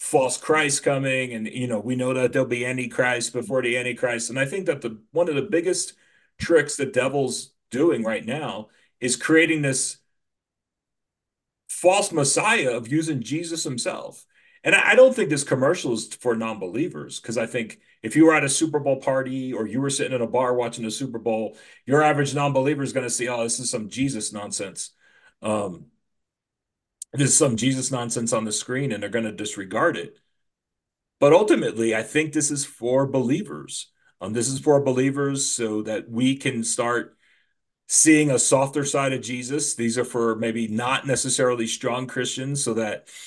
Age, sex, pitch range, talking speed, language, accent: 40-59, male, 120-140 Hz, 185 wpm, English, American